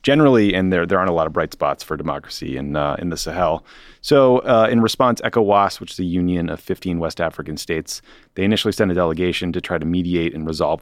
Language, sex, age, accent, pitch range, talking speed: English, male, 30-49, American, 85-105 Hz, 235 wpm